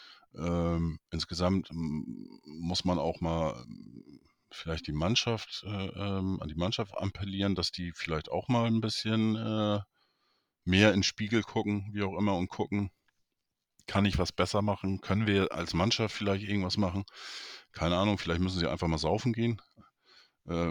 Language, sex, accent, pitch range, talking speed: German, male, German, 80-100 Hz, 155 wpm